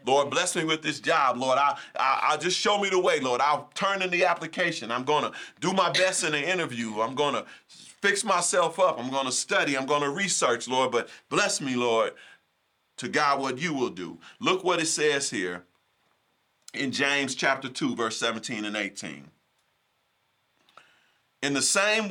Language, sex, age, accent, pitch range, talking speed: English, male, 40-59, American, 105-155 Hz, 190 wpm